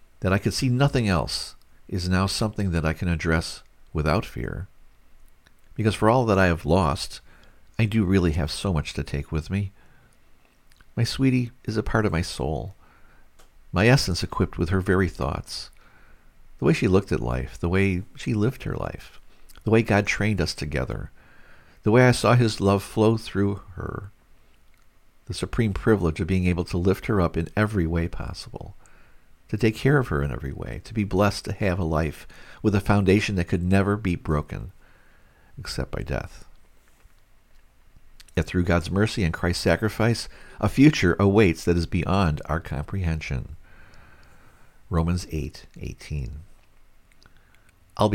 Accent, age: American, 50-69